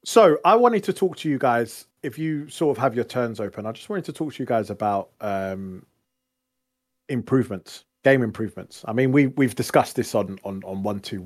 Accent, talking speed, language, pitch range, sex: British, 210 wpm, English, 105-135 Hz, male